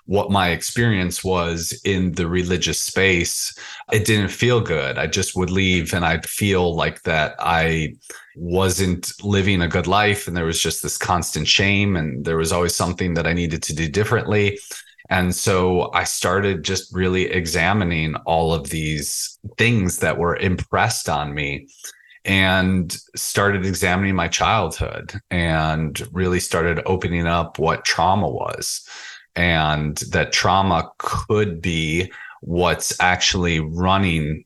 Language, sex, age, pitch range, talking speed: English, male, 30-49, 80-100 Hz, 145 wpm